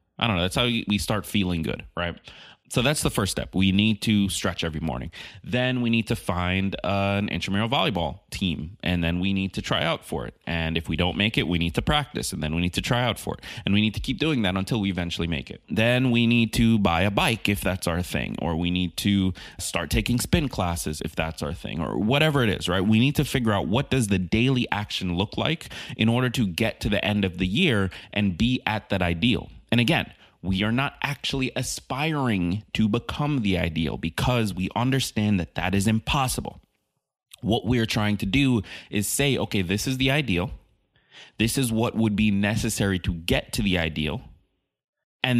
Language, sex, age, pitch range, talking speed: English, male, 30-49, 90-115 Hz, 220 wpm